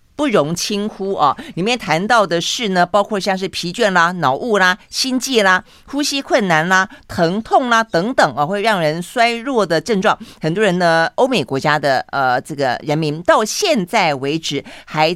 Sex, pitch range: female, 160-225 Hz